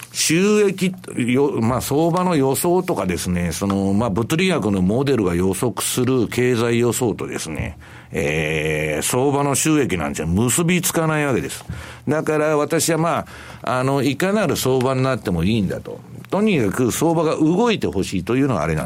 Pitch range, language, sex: 110-160 Hz, Japanese, male